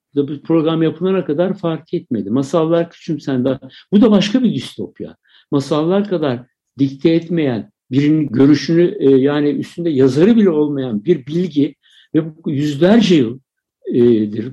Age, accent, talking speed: 60-79, native, 120 wpm